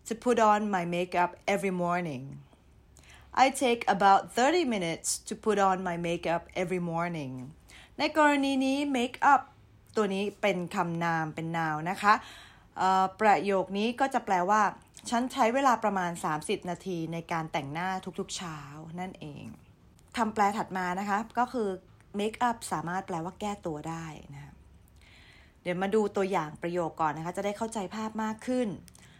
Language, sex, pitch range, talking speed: English, female, 170-220 Hz, 55 wpm